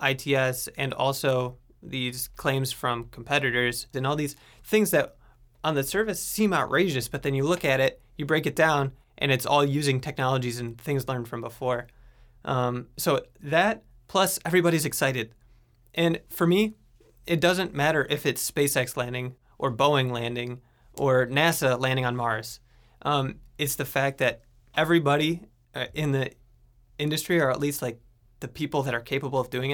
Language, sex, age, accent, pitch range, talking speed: English, male, 20-39, American, 125-150 Hz, 165 wpm